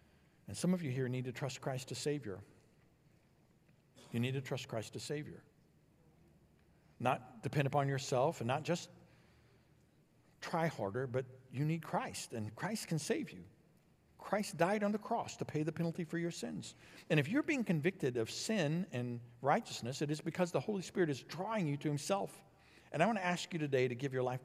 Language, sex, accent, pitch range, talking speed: English, male, American, 115-170 Hz, 195 wpm